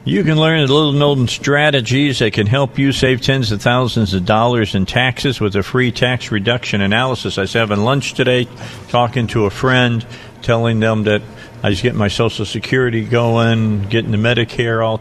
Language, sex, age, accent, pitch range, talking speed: English, male, 50-69, American, 100-120 Hz, 190 wpm